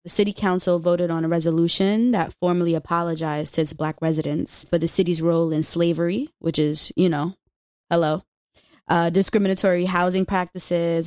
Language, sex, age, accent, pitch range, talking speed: English, female, 20-39, American, 165-190 Hz, 155 wpm